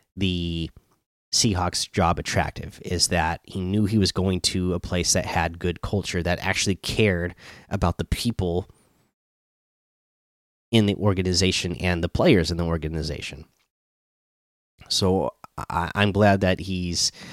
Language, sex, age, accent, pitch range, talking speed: English, male, 30-49, American, 85-100 Hz, 130 wpm